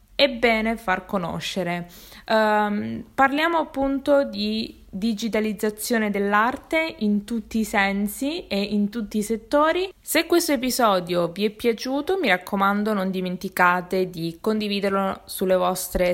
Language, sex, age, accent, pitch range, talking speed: Italian, female, 20-39, native, 185-245 Hz, 120 wpm